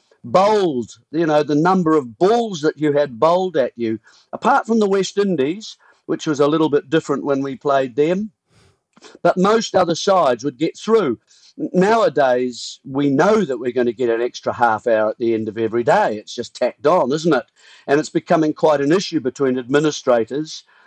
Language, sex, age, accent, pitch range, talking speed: English, male, 50-69, British, 135-180 Hz, 195 wpm